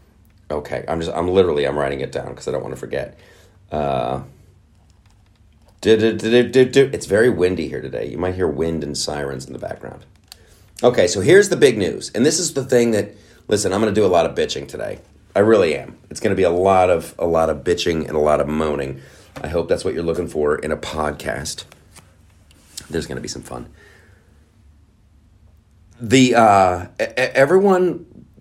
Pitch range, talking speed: 80-110 Hz, 200 wpm